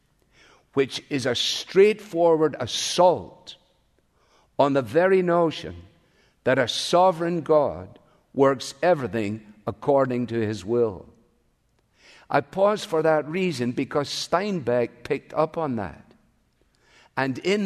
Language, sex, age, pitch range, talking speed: English, male, 50-69, 125-175 Hz, 110 wpm